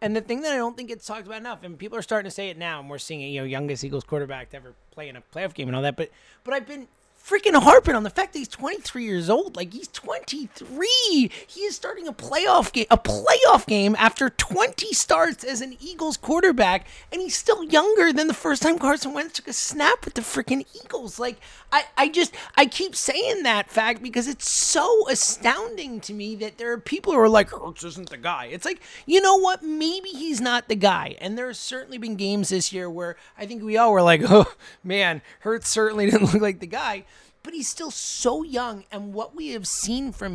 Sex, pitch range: male, 205-305 Hz